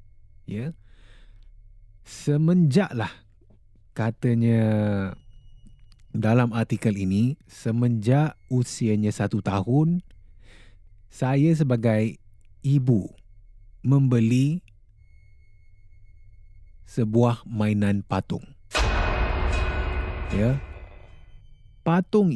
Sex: male